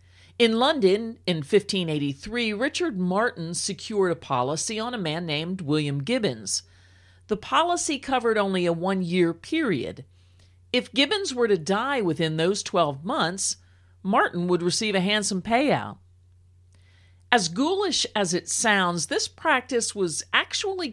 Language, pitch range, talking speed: English, 145-235 Hz, 130 wpm